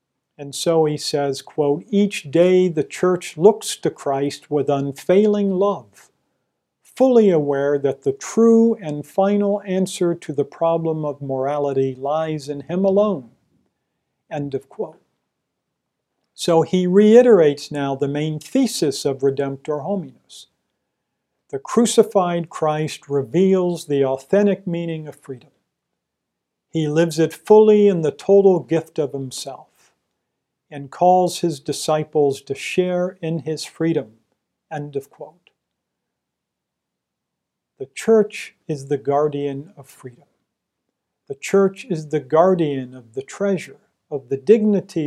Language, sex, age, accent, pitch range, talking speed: English, male, 50-69, American, 140-185 Hz, 125 wpm